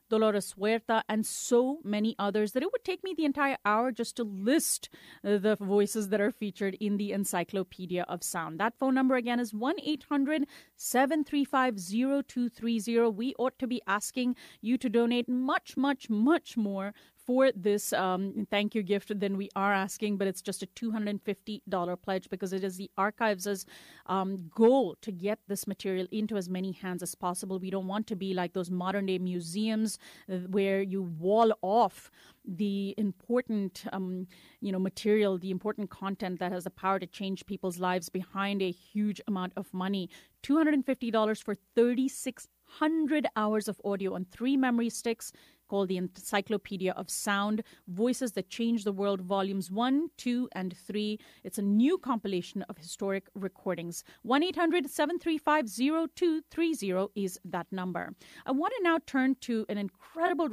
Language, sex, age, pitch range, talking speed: English, female, 30-49, 195-245 Hz, 155 wpm